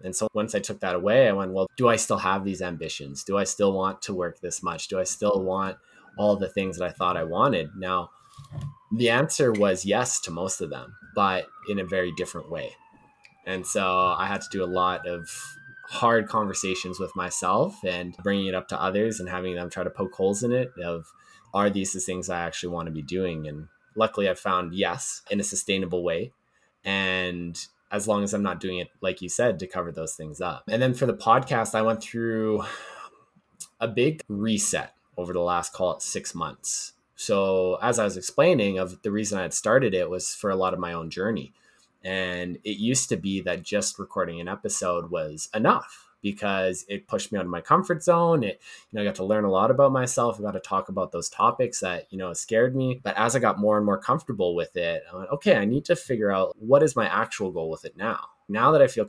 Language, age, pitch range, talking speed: English, 20-39, 90-105 Hz, 230 wpm